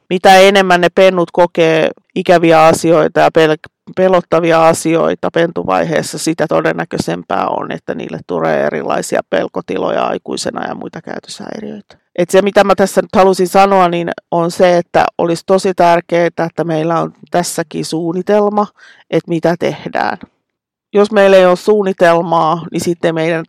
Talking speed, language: 140 wpm, Finnish